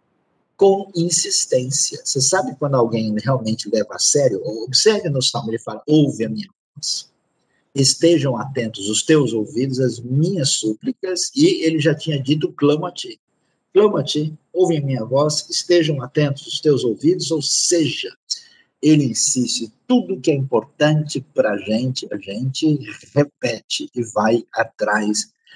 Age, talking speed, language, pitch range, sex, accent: 50-69, 145 wpm, Portuguese, 120-165 Hz, male, Brazilian